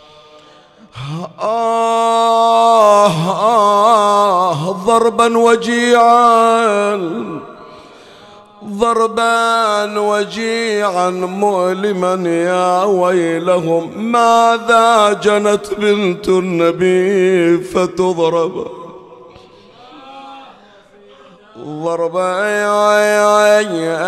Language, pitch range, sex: Arabic, 185-230 Hz, male